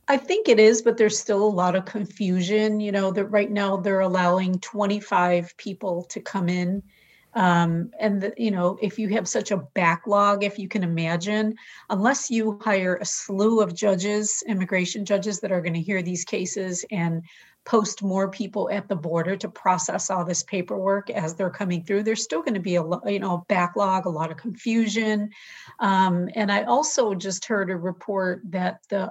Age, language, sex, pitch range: 40-59, English, female, 175-210 Hz